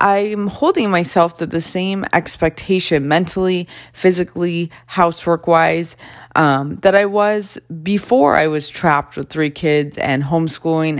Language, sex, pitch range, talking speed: English, female, 140-175 Hz, 130 wpm